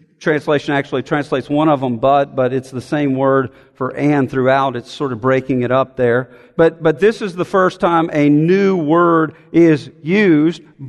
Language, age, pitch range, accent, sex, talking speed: English, 50-69, 155-230 Hz, American, male, 185 wpm